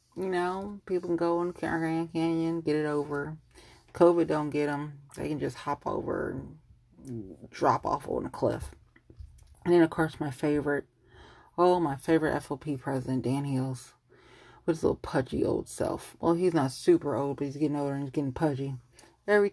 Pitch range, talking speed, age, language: 140-175 Hz, 180 wpm, 30-49, English